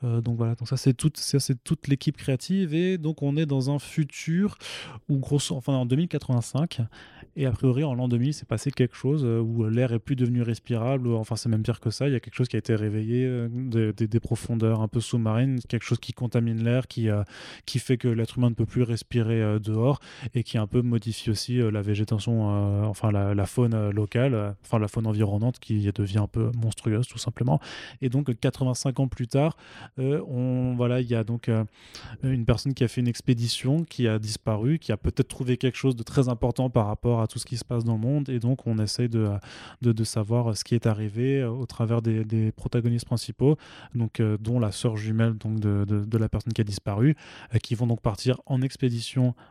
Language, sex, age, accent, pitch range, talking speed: French, male, 20-39, French, 110-130 Hz, 235 wpm